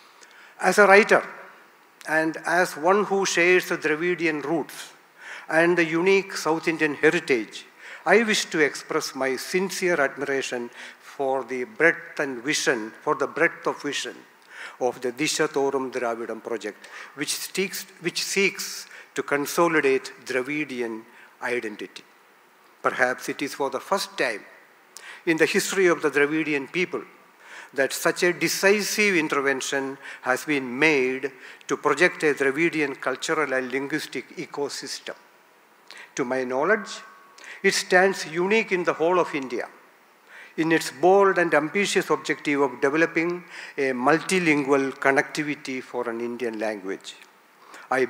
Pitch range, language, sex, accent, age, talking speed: 135-180 Hz, Tamil, male, native, 60-79, 130 wpm